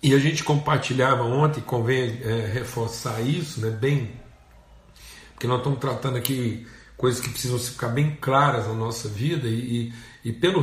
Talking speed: 150 wpm